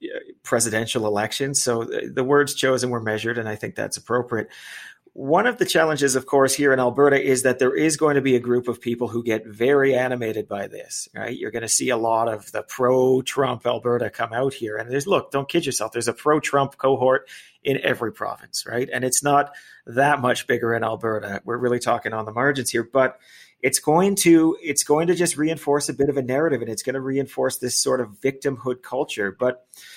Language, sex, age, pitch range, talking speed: English, male, 30-49, 120-145 Hz, 215 wpm